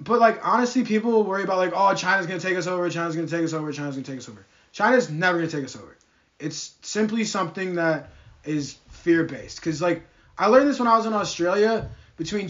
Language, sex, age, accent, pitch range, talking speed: English, male, 20-39, American, 145-180 Hz, 245 wpm